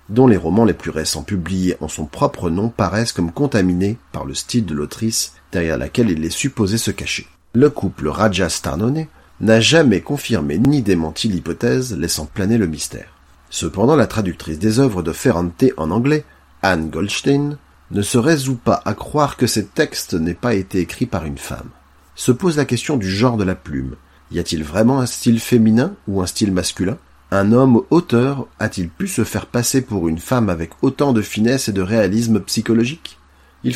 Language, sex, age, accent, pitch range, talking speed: French, male, 40-59, French, 85-120 Hz, 190 wpm